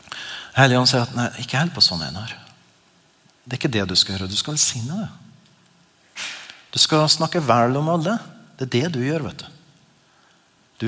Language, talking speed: English, 195 wpm